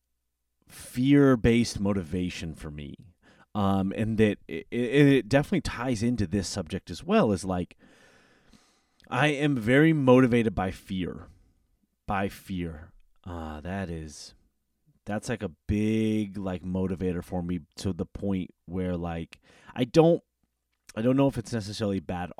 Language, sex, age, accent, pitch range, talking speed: English, male, 30-49, American, 90-120 Hz, 135 wpm